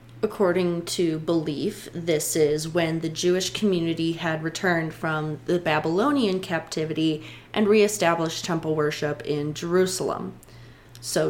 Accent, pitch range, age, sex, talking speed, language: American, 165-230 Hz, 20-39, female, 115 wpm, English